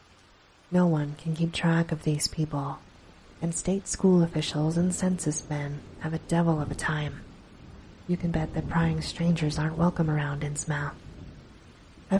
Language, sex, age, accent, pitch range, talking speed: English, female, 30-49, American, 145-170 Hz, 155 wpm